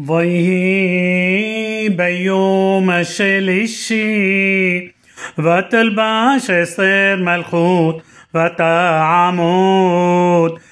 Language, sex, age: Hebrew, male, 30-49